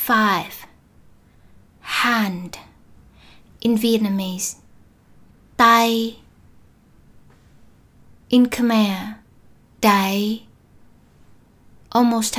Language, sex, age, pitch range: Vietnamese, female, 20-39, 190-230 Hz